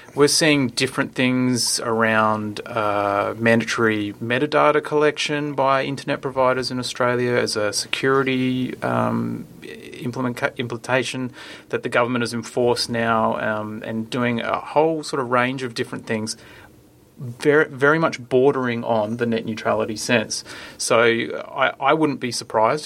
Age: 30-49